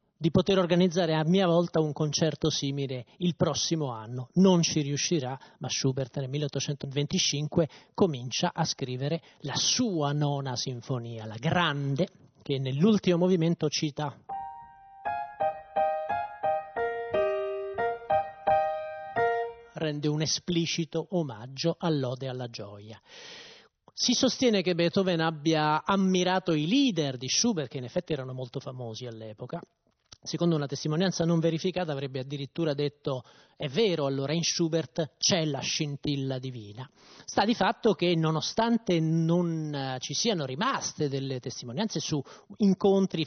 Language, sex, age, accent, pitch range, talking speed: Italian, male, 30-49, native, 140-180 Hz, 120 wpm